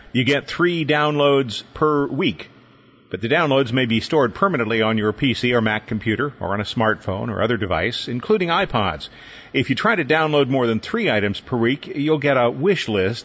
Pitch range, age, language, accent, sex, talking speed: 105-130 Hz, 50-69, English, American, male, 200 wpm